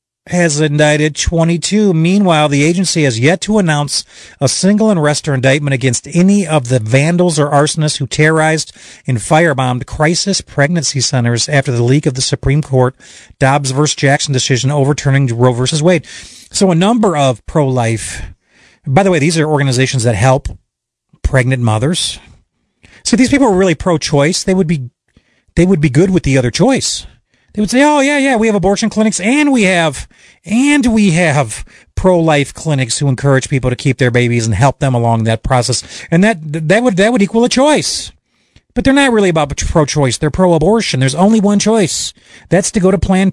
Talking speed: 185 wpm